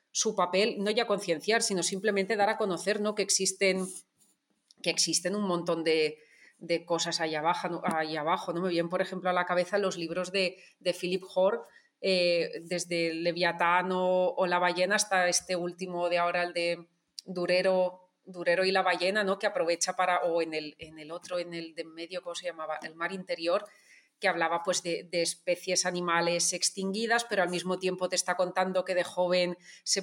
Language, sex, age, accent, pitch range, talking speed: Spanish, female, 30-49, Spanish, 175-195 Hz, 190 wpm